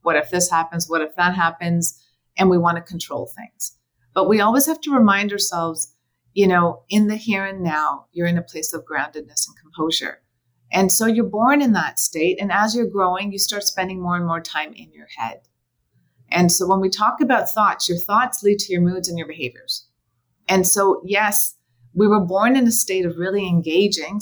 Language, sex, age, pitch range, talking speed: English, female, 30-49, 165-200 Hz, 210 wpm